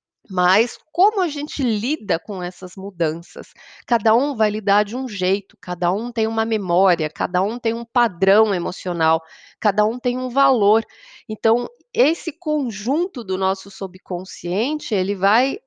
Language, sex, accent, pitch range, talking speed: Portuguese, female, Brazilian, 195-265 Hz, 150 wpm